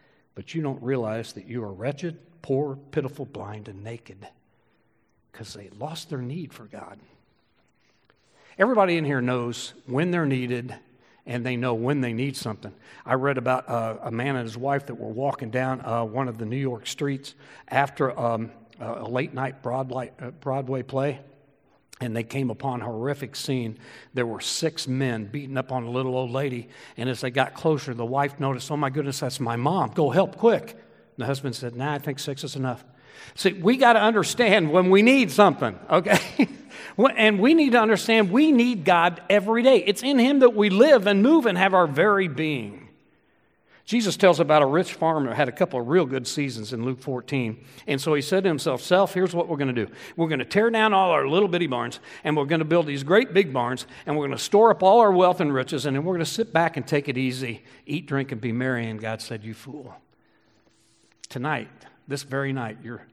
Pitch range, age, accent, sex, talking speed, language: 125-170 Hz, 60-79, American, male, 215 wpm, English